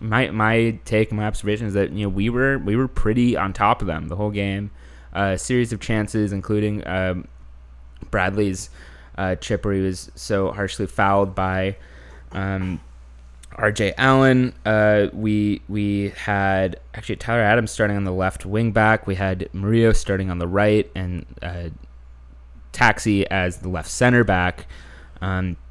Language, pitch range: English, 90-105 Hz